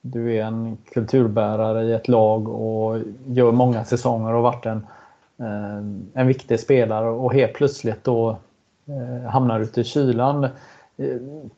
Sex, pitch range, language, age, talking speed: male, 115-135 Hz, Swedish, 30-49, 125 wpm